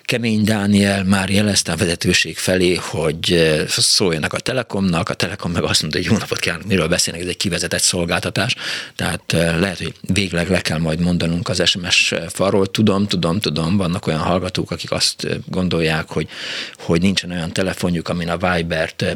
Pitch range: 85-110 Hz